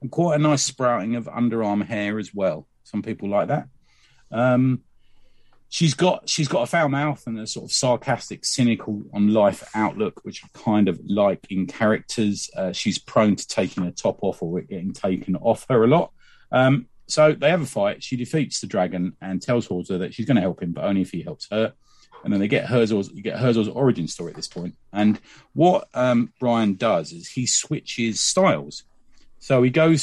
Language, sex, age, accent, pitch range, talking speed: English, male, 40-59, British, 100-130 Hz, 205 wpm